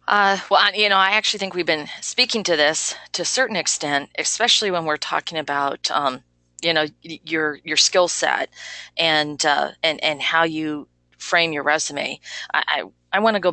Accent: American